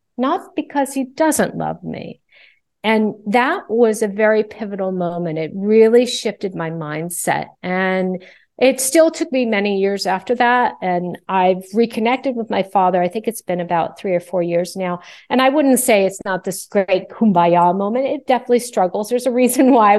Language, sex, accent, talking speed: English, female, American, 180 wpm